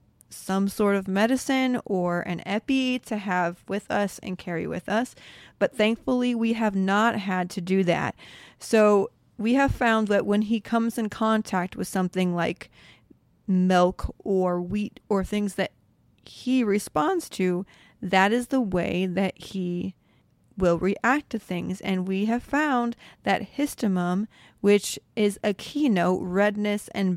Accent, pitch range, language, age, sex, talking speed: American, 185-220 Hz, English, 30-49, female, 150 wpm